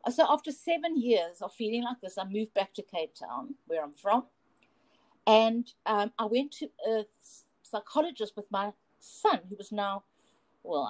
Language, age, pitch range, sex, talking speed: English, 50-69, 190-250 Hz, female, 170 wpm